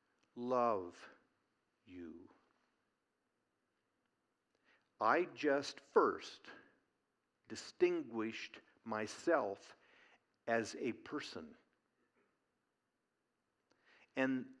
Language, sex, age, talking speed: English, male, 60-79, 45 wpm